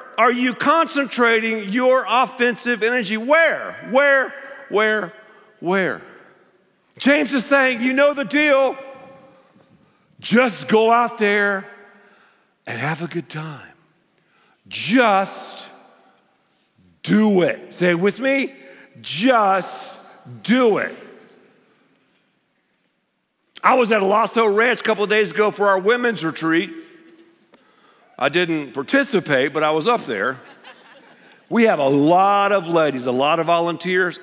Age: 50-69